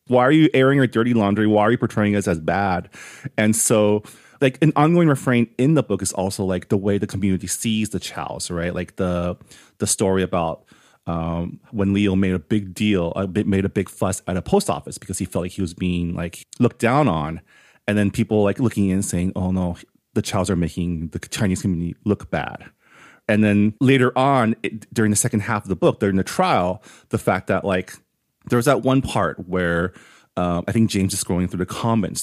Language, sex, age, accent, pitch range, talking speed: English, male, 30-49, American, 95-120 Hz, 220 wpm